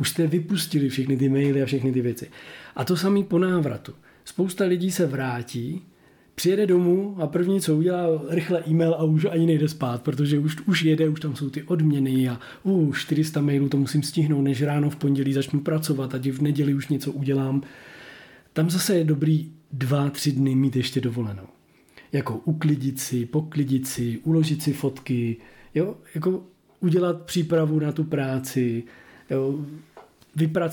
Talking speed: 165 wpm